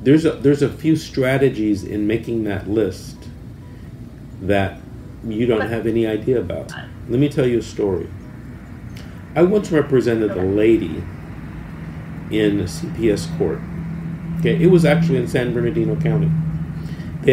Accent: American